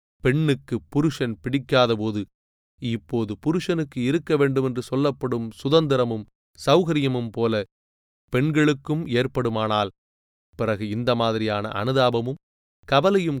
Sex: male